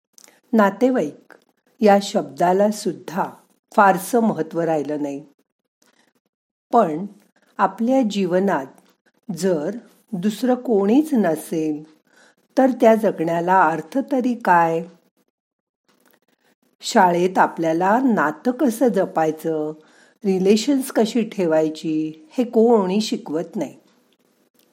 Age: 50-69